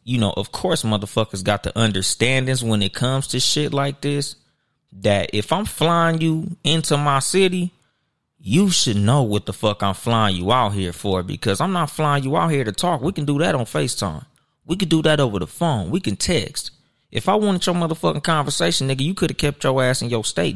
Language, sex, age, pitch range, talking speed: English, male, 20-39, 105-145 Hz, 220 wpm